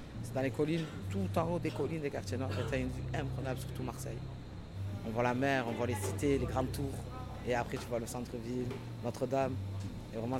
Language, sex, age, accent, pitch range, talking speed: French, male, 20-39, French, 115-140 Hz, 230 wpm